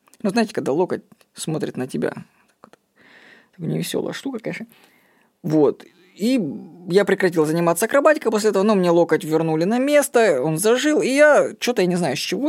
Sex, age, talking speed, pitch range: female, 20-39, 170 wpm, 160-230 Hz